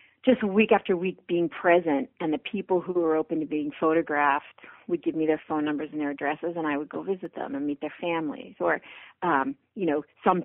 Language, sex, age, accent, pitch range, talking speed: English, female, 40-59, American, 160-200 Hz, 225 wpm